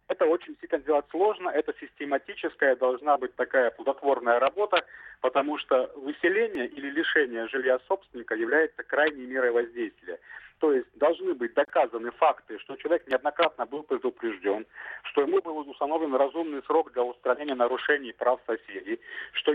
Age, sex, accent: 40-59, male, native